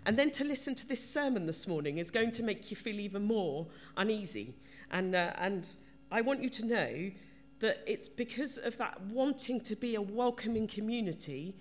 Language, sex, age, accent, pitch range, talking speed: English, female, 40-59, British, 165-250 Hz, 190 wpm